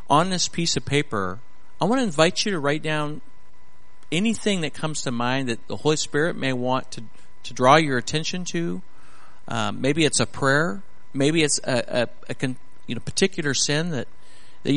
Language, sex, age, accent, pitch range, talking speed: English, male, 50-69, American, 110-150 Hz, 190 wpm